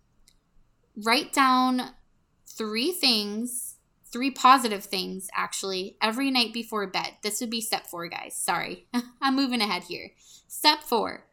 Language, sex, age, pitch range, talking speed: English, female, 20-39, 195-245 Hz, 130 wpm